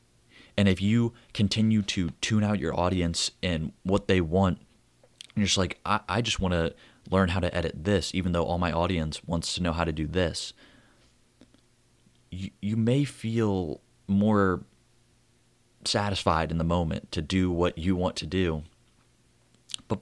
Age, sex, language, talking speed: 30-49, male, English, 170 wpm